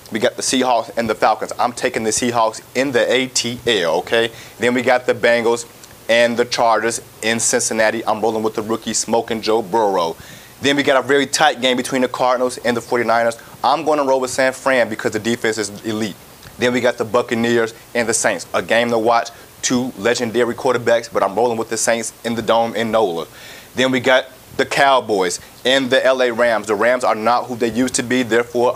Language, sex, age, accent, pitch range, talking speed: English, male, 30-49, American, 115-130 Hz, 215 wpm